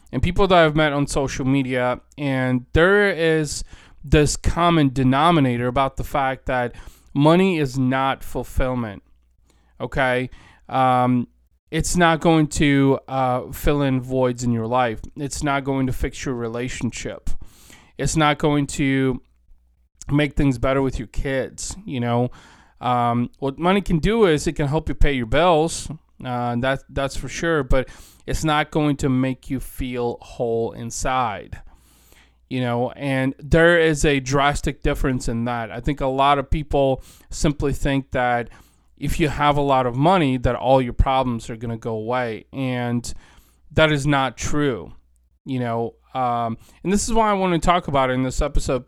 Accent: American